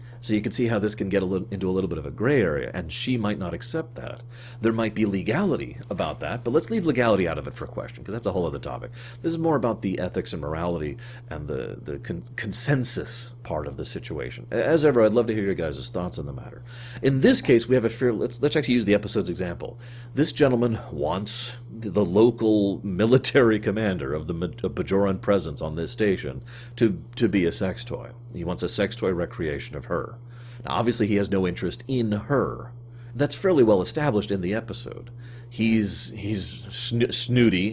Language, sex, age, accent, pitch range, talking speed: English, male, 40-59, American, 100-120 Hz, 215 wpm